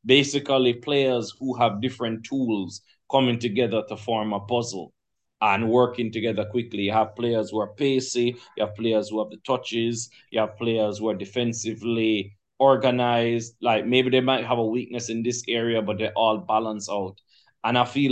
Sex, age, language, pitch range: male, 30-49, English, 110-125 Hz